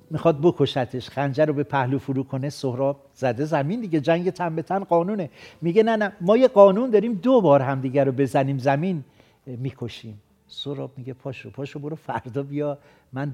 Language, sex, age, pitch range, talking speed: Persian, male, 60-79, 135-190 Hz, 180 wpm